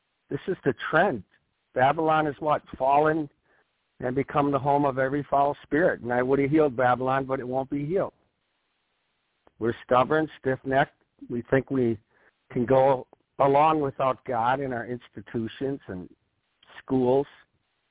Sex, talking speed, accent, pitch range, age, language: male, 145 wpm, American, 115-140 Hz, 60-79, English